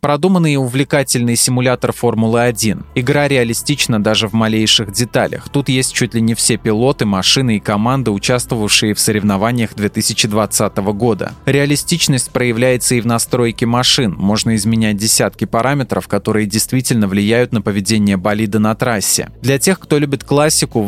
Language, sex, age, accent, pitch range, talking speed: Russian, male, 20-39, native, 110-135 Hz, 145 wpm